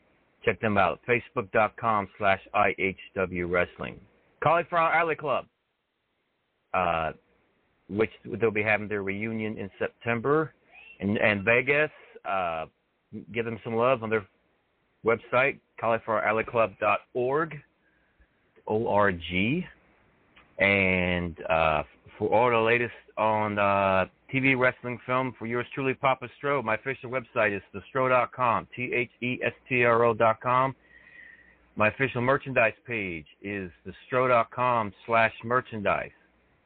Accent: American